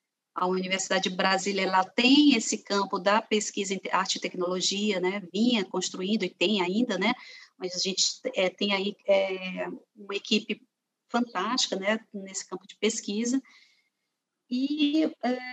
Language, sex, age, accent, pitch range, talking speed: Portuguese, female, 40-59, Brazilian, 195-255 Hz, 145 wpm